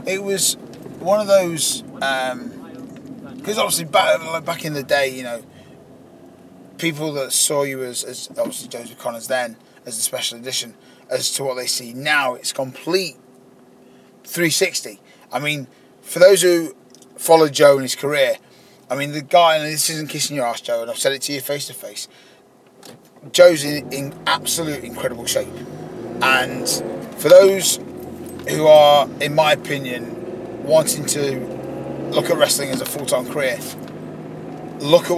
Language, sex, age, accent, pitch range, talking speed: English, male, 20-39, British, 130-175 Hz, 160 wpm